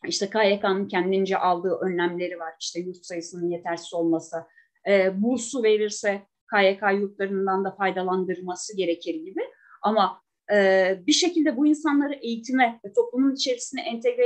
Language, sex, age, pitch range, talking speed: Turkish, female, 30-49, 190-300 Hz, 130 wpm